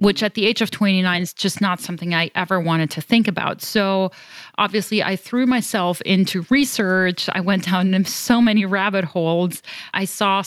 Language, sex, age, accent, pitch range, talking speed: English, female, 30-49, American, 175-205 Hz, 185 wpm